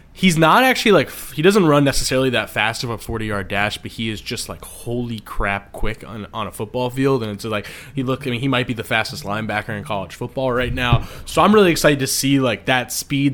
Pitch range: 105-130 Hz